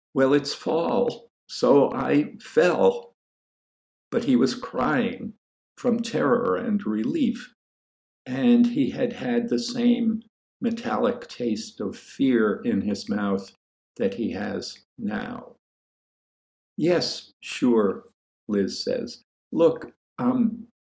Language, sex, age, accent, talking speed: English, male, 60-79, American, 105 wpm